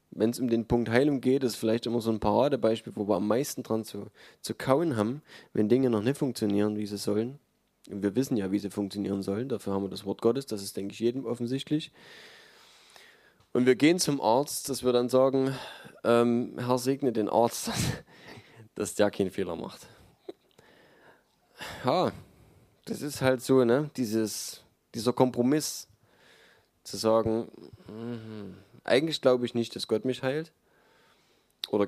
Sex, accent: male, German